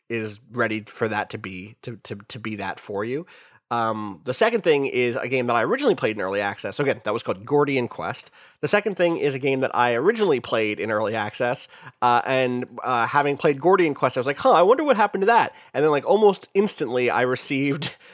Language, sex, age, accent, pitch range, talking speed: English, male, 30-49, American, 115-145 Hz, 235 wpm